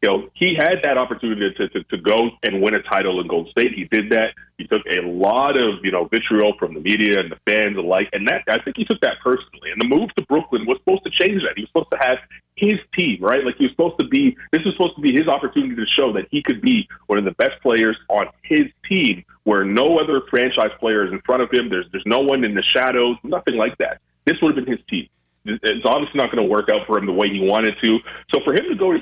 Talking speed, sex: 275 wpm, male